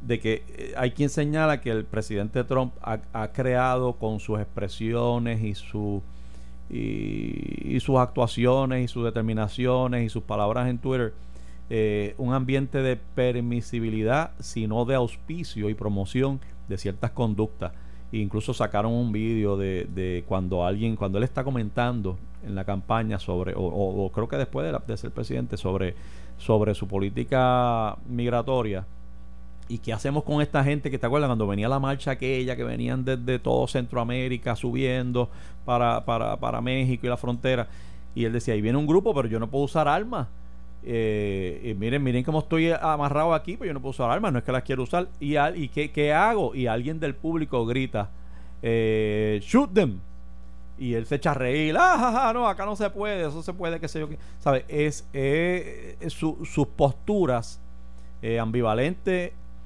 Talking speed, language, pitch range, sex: 175 wpm, Spanish, 100-135 Hz, male